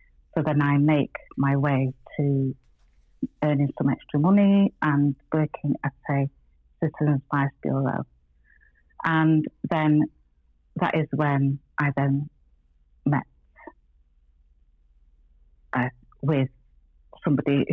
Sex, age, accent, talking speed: female, 40-59, British, 100 wpm